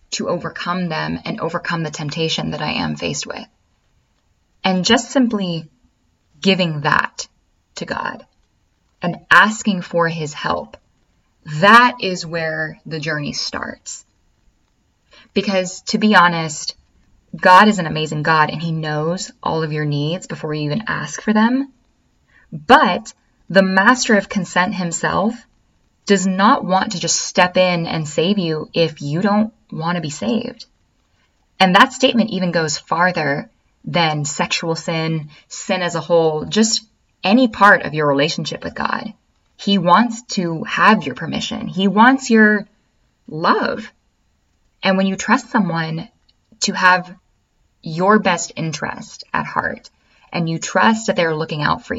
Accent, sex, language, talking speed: American, female, English, 145 wpm